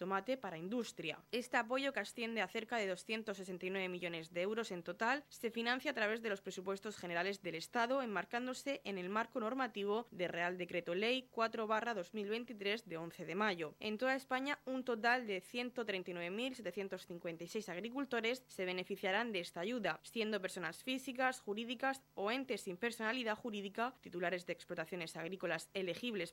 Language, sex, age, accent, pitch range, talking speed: Spanish, female, 20-39, Spanish, 185-235 Hz, 155 wpm